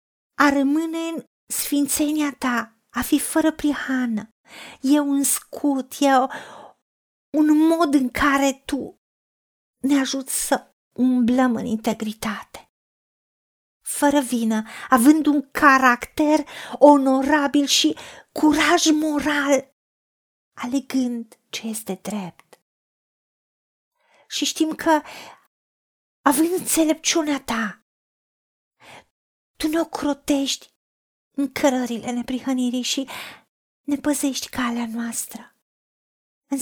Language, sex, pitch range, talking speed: Romanian, female, 255-305 Hz, 90 wpm